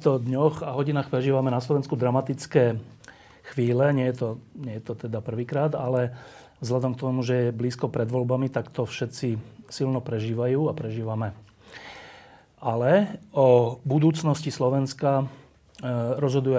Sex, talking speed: male, 135 wpm